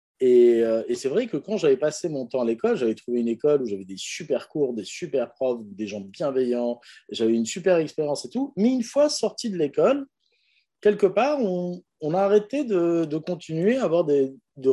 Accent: French